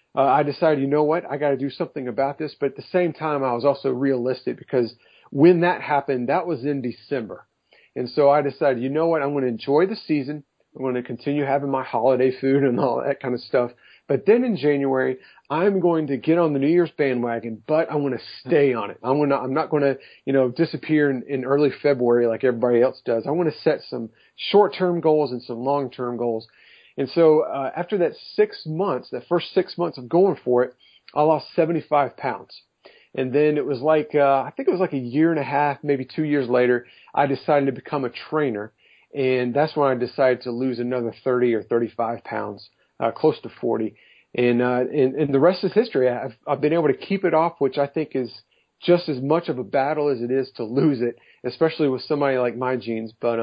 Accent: American